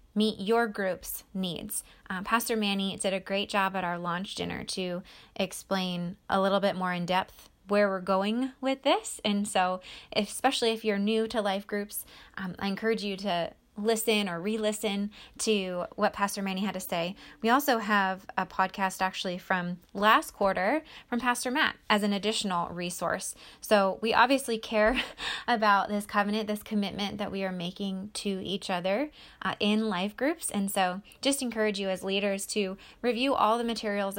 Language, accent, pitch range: English, American, 190-220 Hz